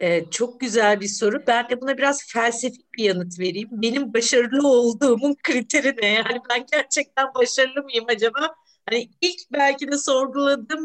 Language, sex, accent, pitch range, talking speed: Turkish, female, native, 215-295 Hz, 155 wpm